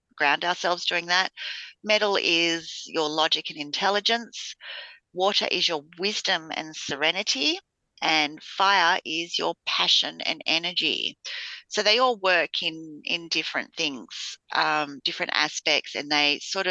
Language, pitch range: English, 155-190 Hz